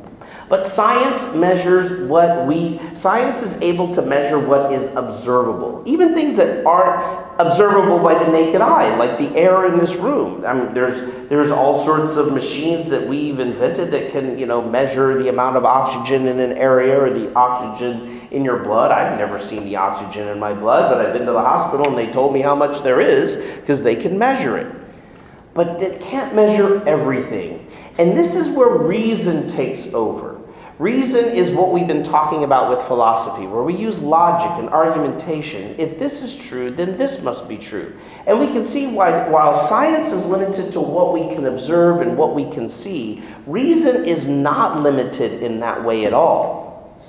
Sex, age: male, 40-59